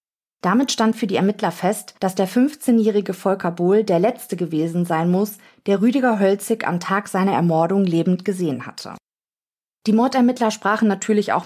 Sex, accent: female, German